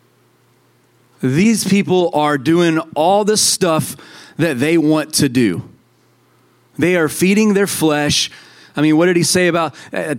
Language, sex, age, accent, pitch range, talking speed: English, male, 30-49, American, 125-180 Hz, 145 wpm